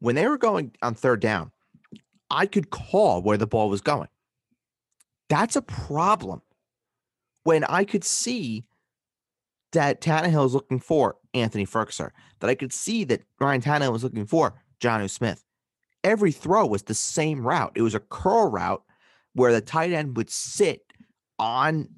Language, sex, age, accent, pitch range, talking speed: English, male, 30-49, American, 115-160 Hz, 160 wpm